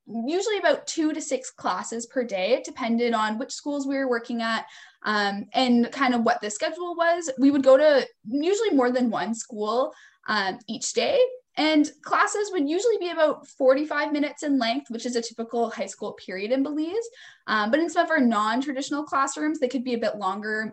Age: 10-29